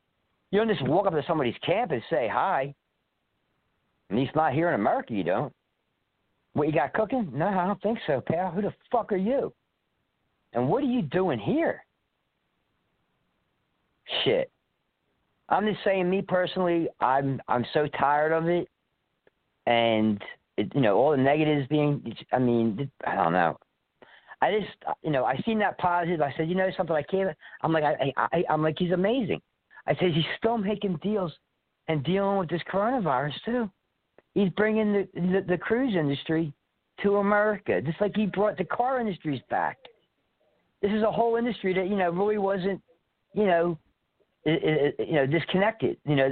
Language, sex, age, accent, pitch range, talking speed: English, male, 40-59, American, 145-200 Hz, 175 wpm